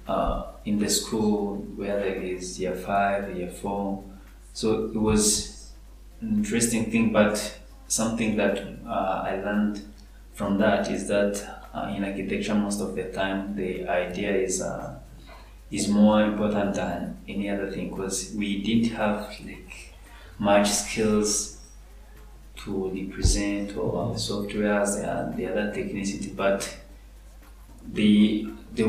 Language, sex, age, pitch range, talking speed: English, male, 20-39, 95-105 Hz, 135 wpm